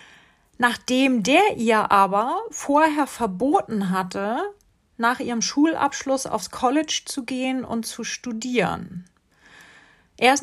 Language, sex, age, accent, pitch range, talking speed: German, female, 40-59, German, 195-250 Hz, 110 wpm